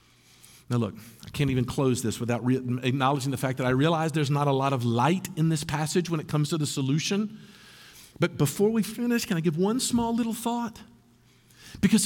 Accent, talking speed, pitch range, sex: American, 205 wpm, 130-180 Hz, male